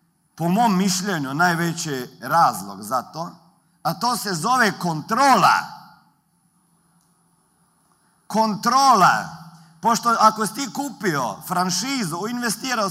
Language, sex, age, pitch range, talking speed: Croatian, male, 50-69, 160-210 Hz, 95 wpm